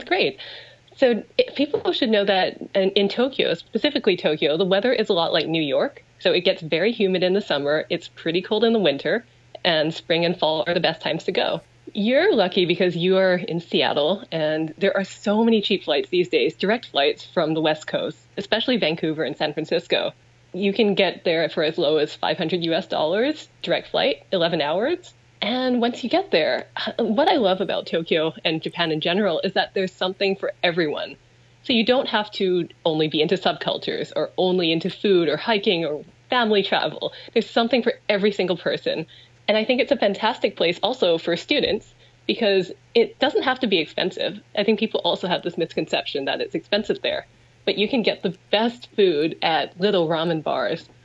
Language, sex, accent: English, female, American